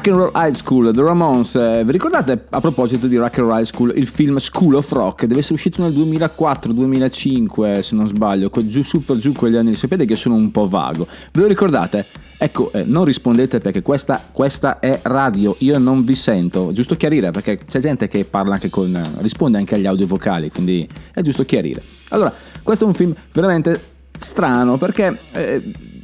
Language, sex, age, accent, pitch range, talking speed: Italian, male, 30-49, native, 110-160 Hz, 180 wpm